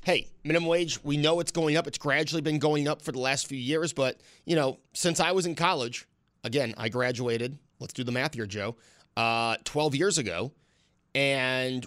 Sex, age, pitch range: male, 30-49, 125-155 Hz